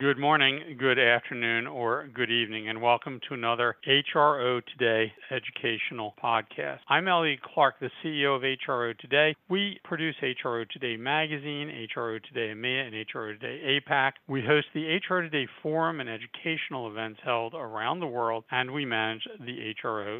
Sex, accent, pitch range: male, American, 120-150 Hz